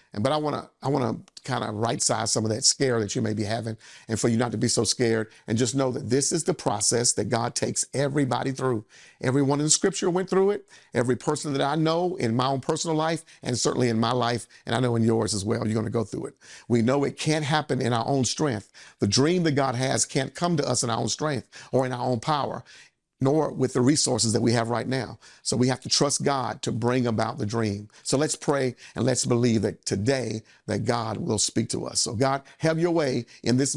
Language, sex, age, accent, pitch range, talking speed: English, male, 50-69, American, 115-135 Hz, 250 wpm